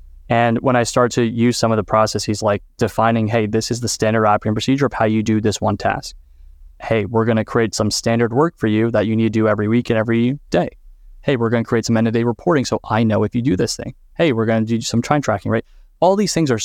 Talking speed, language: 280 wpm, English